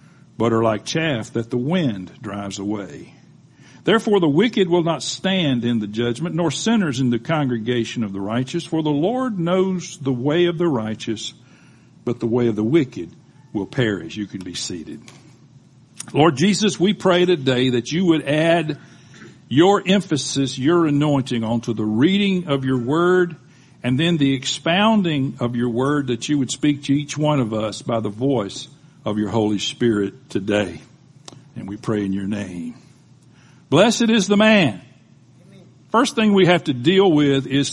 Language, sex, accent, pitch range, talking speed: English, male, American, 125-175 Hz, 170 wpm